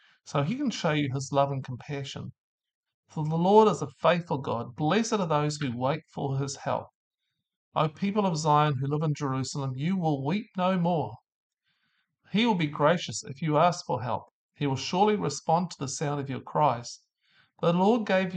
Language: English